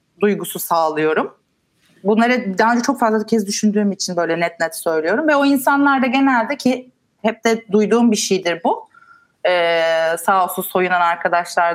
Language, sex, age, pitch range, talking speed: Turkish, female, 30-49, 200-265 Hz, 160 wpm